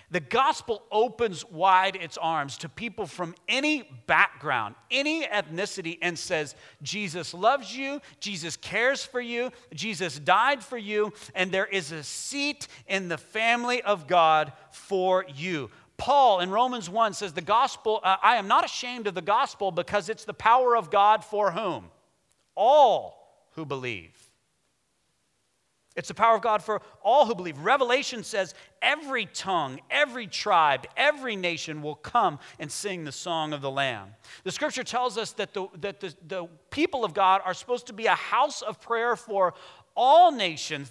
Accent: American